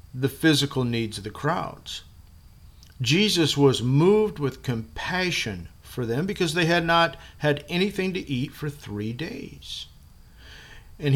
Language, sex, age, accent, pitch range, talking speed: English, male, 50-69, American, 100-150 Hz, 135 wpm